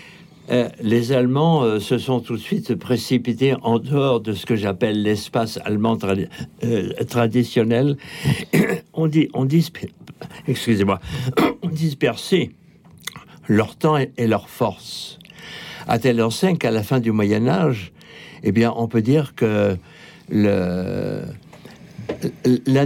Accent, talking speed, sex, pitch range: French, 125 wpm, male, 110-140 Hz